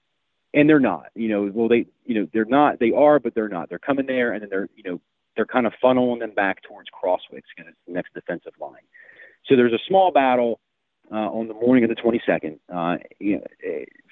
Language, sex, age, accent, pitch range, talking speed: English, male, 40-59, American, 100-130 Hz, 215 wpm